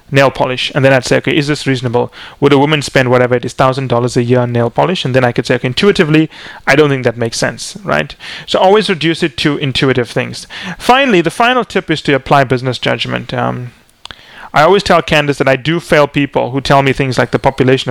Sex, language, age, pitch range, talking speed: male, English, 30-49, 125-150 Hz, 235 wpm